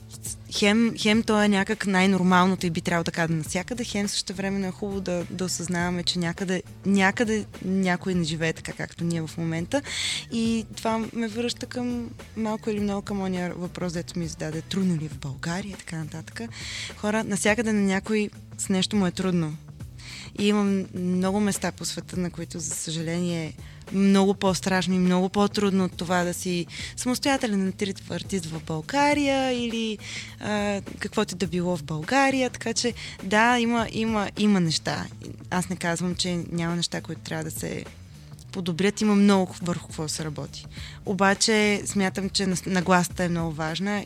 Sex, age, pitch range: female, 20-39, 170-205 Hz